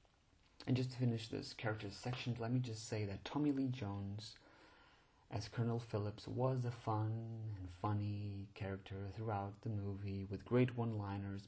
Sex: male